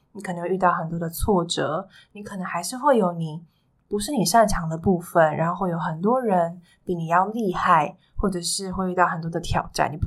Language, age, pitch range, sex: Chinese, 20-39, 165-200 Hz, female